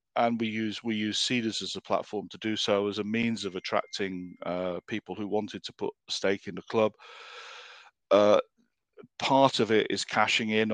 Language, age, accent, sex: English, 50-69, British, male